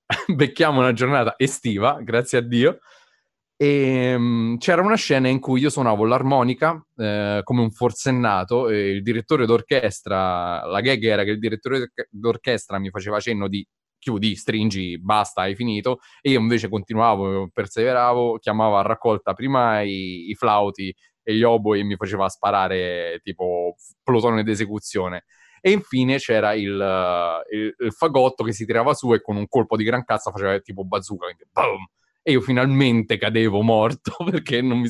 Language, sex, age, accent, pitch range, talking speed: Italian, male, 20-39, native, 105-135 Hz, 160 wpm